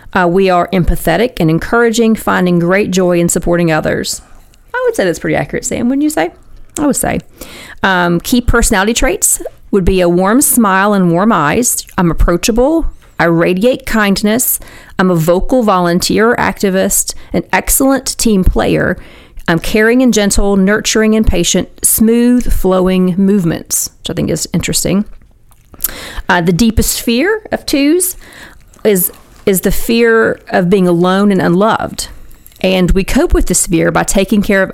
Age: 40-59